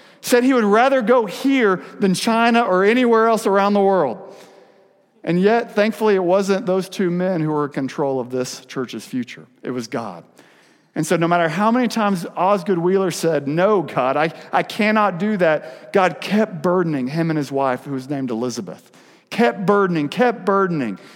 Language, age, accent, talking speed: English, 50-69, American, 185 wpm